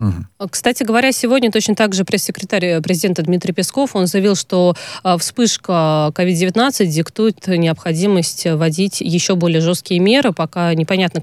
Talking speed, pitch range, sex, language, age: 130 wpm, 170-210 Hz, female, Russian, 20-39